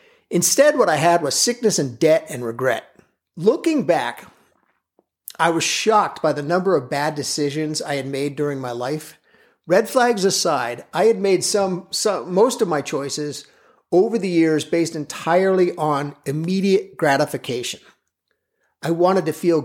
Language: English